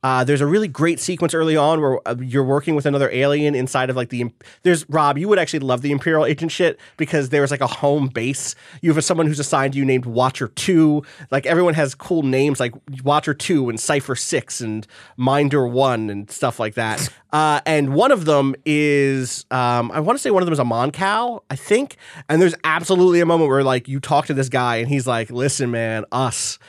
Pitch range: 130-160 Hz